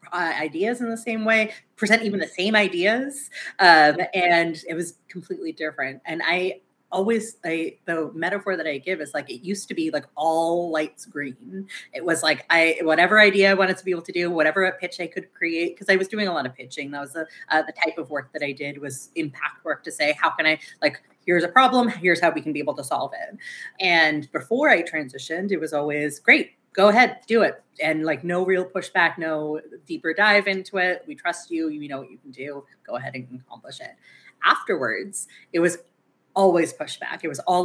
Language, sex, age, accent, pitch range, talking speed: English, female, 30-49, American, 155-195 Hz, 225 wpm